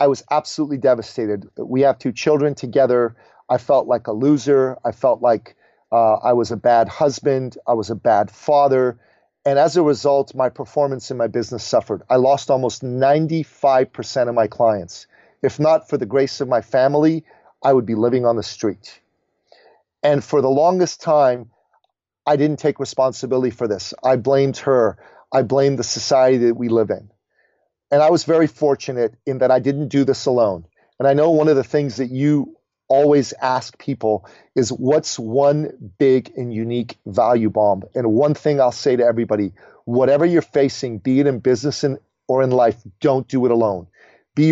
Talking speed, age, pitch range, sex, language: 185 wpm, 40-59, 120-145 Hz, male, English